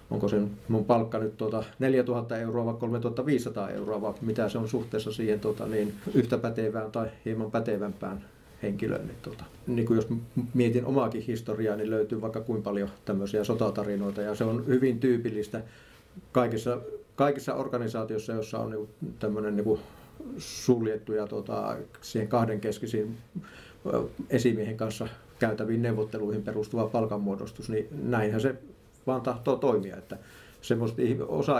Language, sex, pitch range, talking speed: Finnish, male, 105-120 Hz, 135 wpm